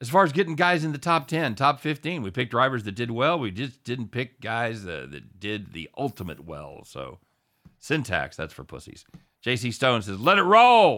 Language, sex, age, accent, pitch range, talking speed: English, male, 40-59, American, 100-125 Hz, 215 wpm